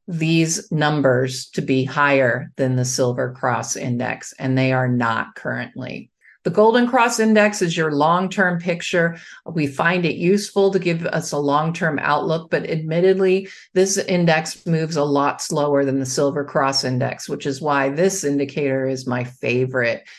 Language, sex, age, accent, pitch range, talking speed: English, male, 50-69, American, 140-180 Hz, 160 wpm